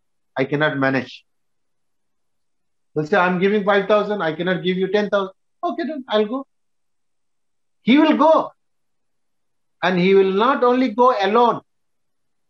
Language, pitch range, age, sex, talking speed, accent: English, 170-240 Hz, 50-69, male, 140 wpm, Indian